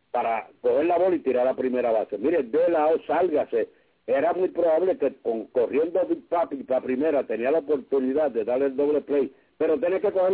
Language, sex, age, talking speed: English, male, 60-79, 210 wpm